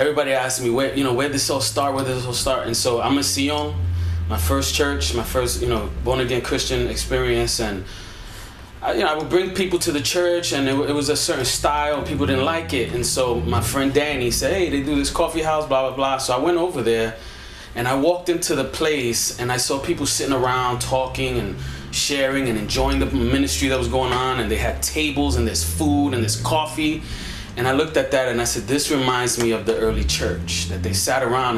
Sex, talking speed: male, 240 wpm